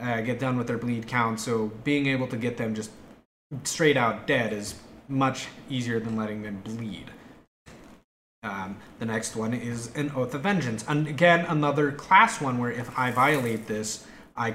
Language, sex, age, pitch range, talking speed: English, male, 20-39, 110-140 Hz, 180 wpm